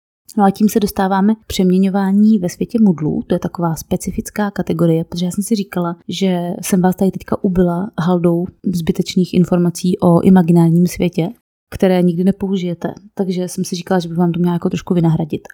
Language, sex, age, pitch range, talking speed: Czech, female, 20-39, 175-195 Hz, 180 wpm